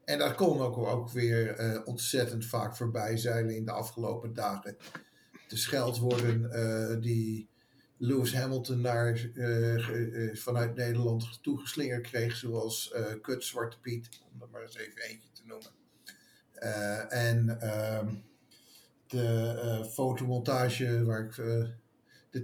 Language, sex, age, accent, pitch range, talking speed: English, male, 50-69, Dutch, 115-130 Hz, 135 wpm